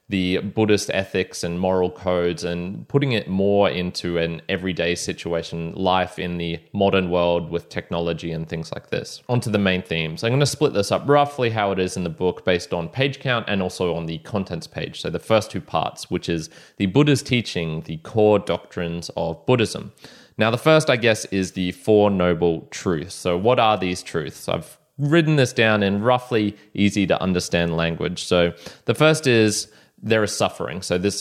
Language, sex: English, male